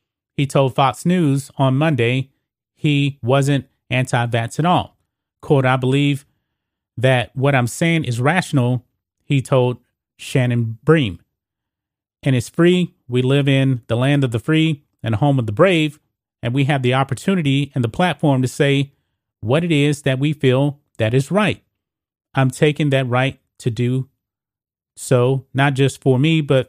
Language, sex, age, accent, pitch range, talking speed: English, male, 30-49, American, 120-145 Hz, 160 wpm